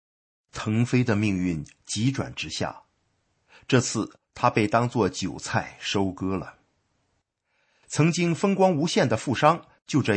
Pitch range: 95-145 Hz